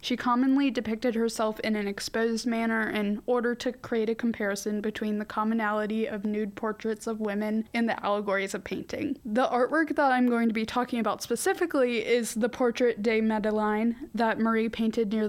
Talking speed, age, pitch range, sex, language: 180 wpm, 10-29, 210-245 Hz, female, English